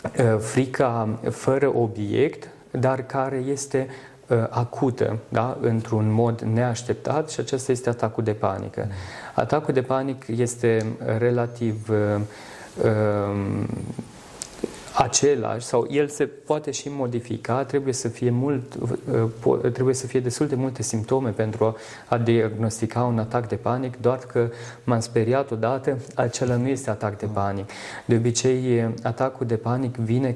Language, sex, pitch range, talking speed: Romanian, male, 110-130 Hz, 130 wpm